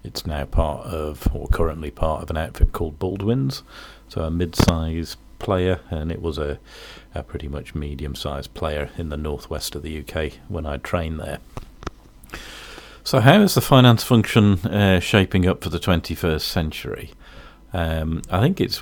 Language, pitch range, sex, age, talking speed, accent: English, 75-90 Hz, male, 40-59, 165 wpm, British